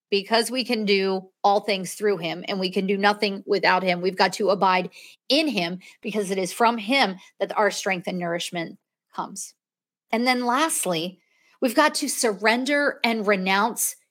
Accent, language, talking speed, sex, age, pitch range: American, English, 175 wpm, female, 40-59, 185-230 Hz